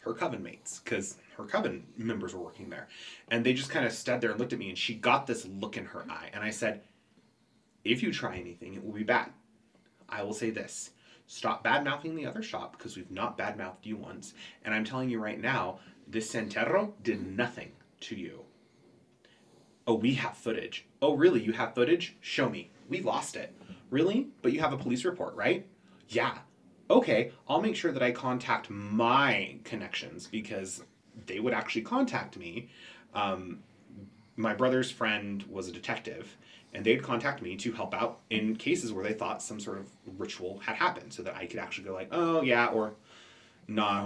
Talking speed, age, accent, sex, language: 195 wpm, 30-49, American, male, English